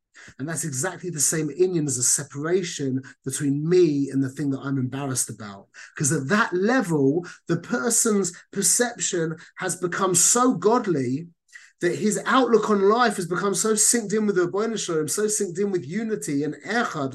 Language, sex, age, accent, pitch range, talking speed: English, male, 30-49, British, 150-205 Hz, 170 wpm